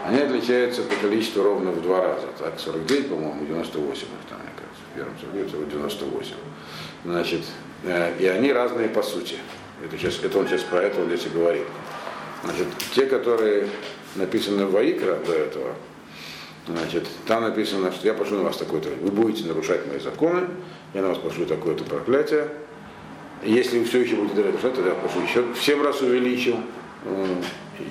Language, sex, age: Russian, male, 50-69